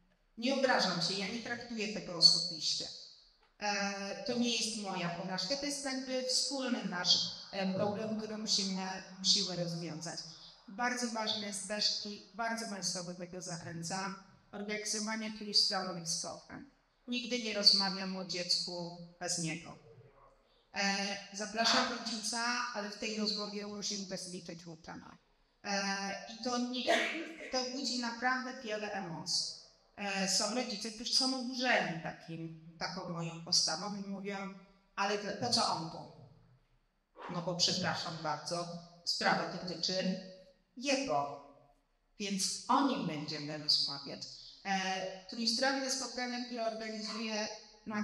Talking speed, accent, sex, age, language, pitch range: 115 wpm, native, female, 30-49, Polish, 175-220 Hz